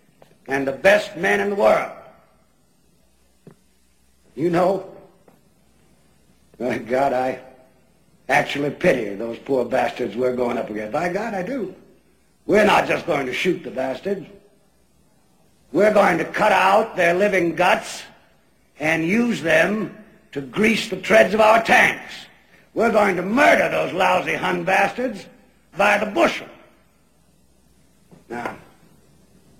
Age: 60-79